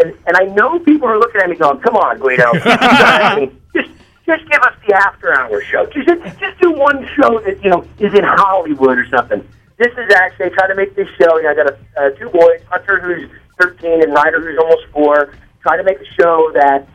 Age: 40-59